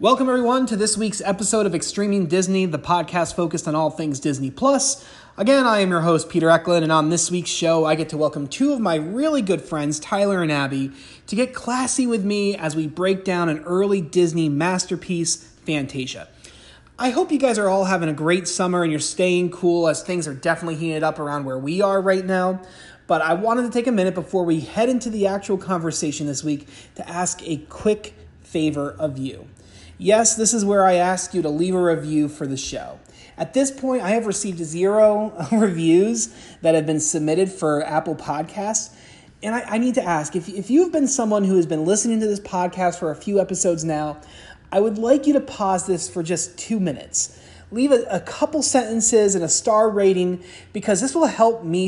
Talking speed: 210 wpm